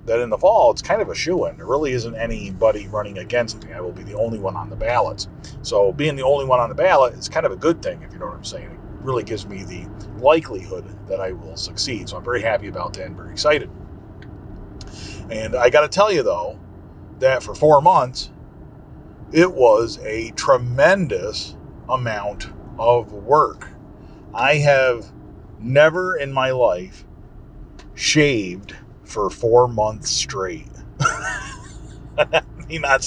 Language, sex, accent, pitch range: English, male, American, 100-130 Hz